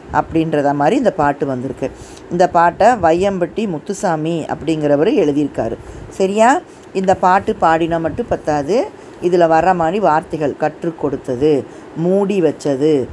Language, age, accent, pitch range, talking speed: Tamil, 20-39, native, 150-210 Hz, 115 wpm